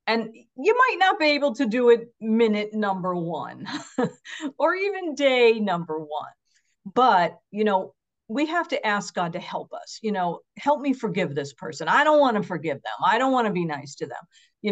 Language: English